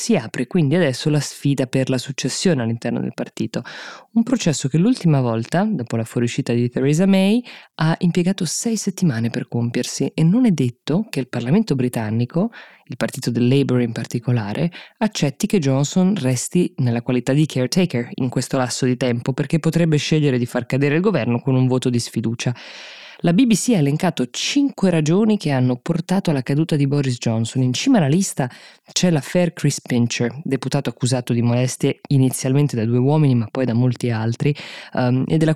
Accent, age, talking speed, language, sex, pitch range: native, 20-39, 180 wpm, Italian, female, 125-165 Hz